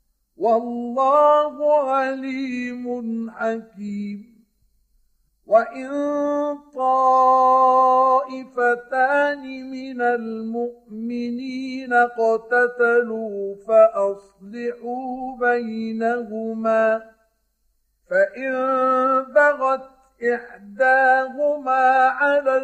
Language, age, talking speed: Arabic, 50-69, 35 wpm